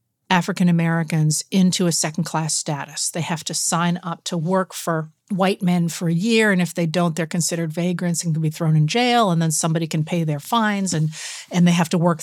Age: 50-69